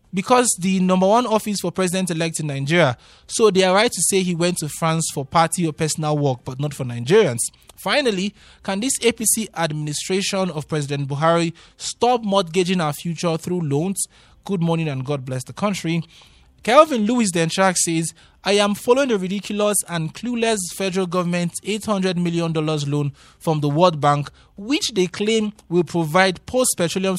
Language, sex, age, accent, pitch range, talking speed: English, male, 20-39, Nigerian, 155-195 Hz, 165 wpm